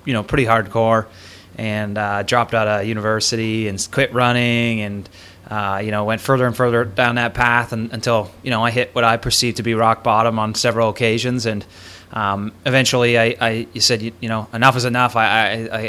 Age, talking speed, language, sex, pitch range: 20-39, 210 wpm, English, male, 105-120 Hz